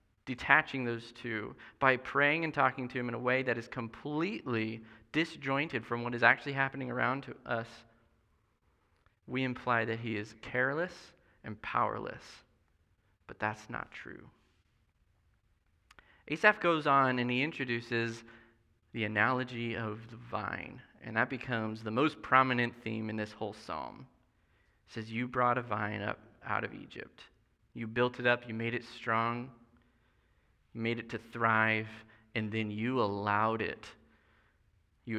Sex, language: male, English